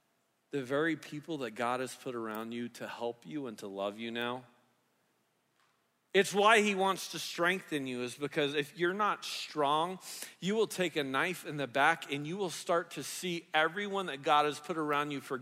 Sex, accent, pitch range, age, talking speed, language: male, American, 155-205 Hz, 40-59, 200 wpm, English